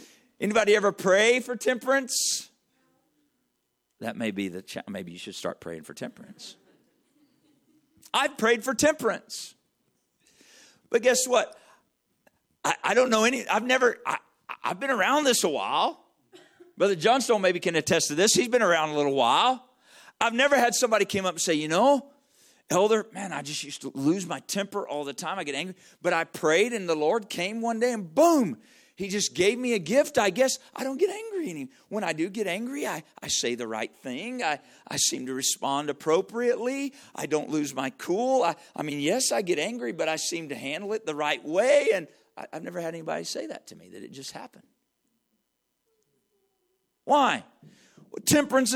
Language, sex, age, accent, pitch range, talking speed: English, male, 50-69, American, 175-270 Hz, 190 wpm